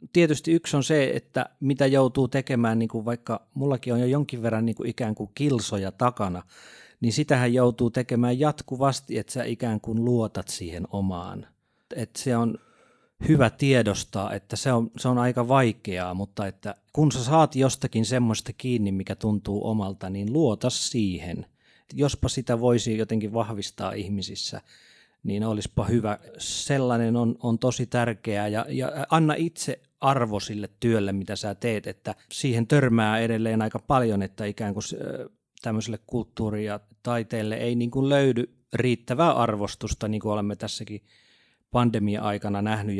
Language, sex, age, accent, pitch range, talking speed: Finnish, male, 30-49, native, 105-125 Hz, 150 wpm